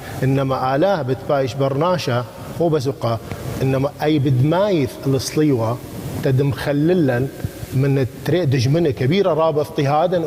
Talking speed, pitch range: 95 wpm, 130-175 Hz